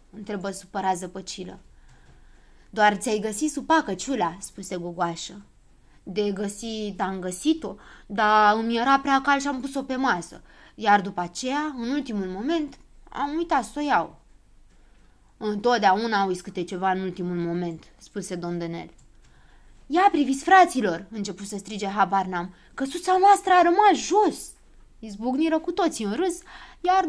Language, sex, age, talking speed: Romanian, female, 20-39, 140 wpm